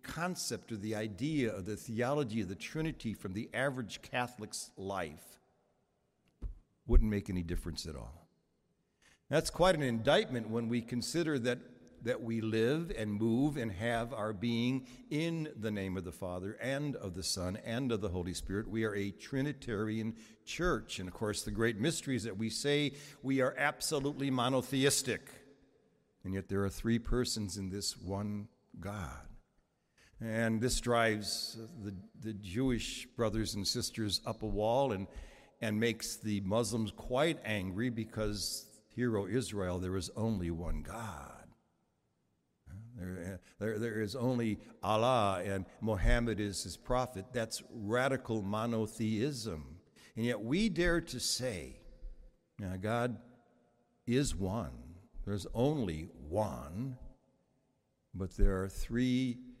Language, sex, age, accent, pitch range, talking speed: English, male, 60-79, American, 100-125 Hz, 145 wpm